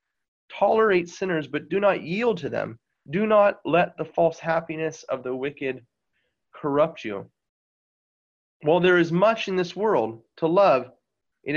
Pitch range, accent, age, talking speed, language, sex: 135-185 Hz, American, 30-49, 150 wpm, English, male